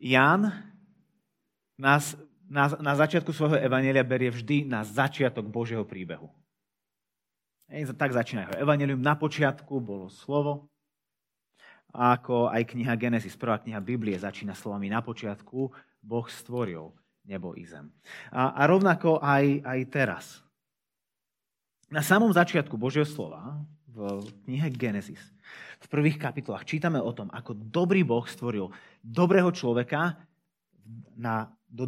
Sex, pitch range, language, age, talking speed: male, 115-170 Hz, Slovak, 30-49, 125 wpm